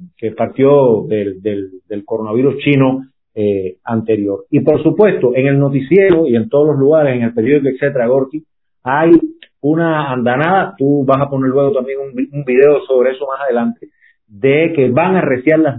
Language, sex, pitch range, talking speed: Spanish, male, 125-165 Hz, 180 wpm